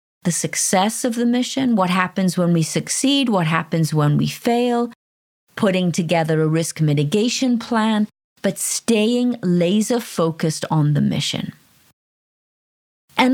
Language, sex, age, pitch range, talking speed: English, female, 30-49, 155-215 Hz, 125 wpm